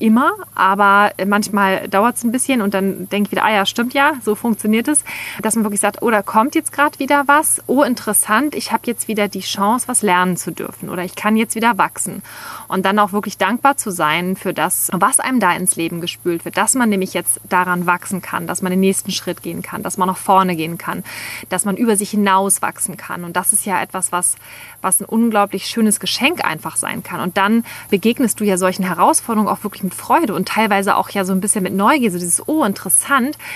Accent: German